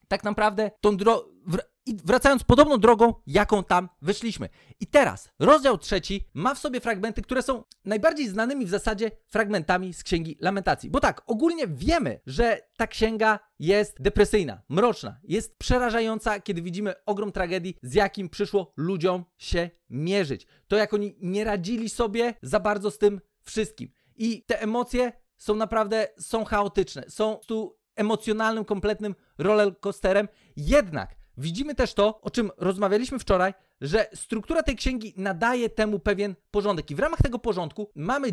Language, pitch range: Polish, 185-230 Hz